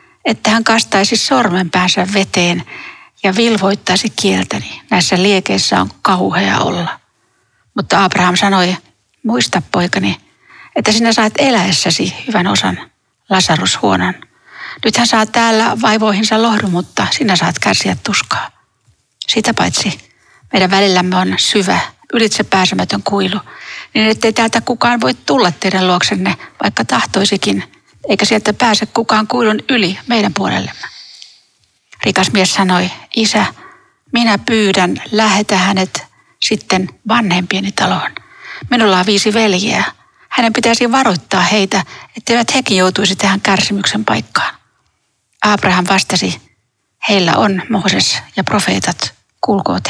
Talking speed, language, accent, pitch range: 115 wpm, Finnish, native, 190-230 Hz